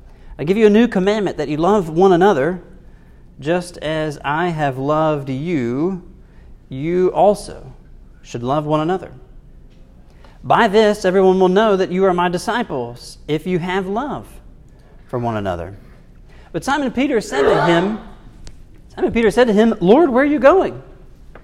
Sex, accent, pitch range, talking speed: male, American, 145-200 Hz, 155 wpm